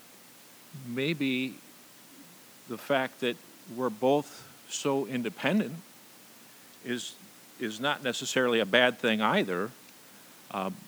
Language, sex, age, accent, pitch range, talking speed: English, male, 50-69, American, 95-125 Hz, 95 wpm